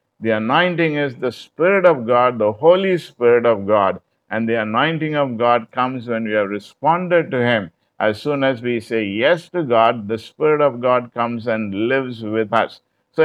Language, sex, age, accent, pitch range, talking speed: English, male, 50-69, Indian, 120-160 Hz, 190 wpm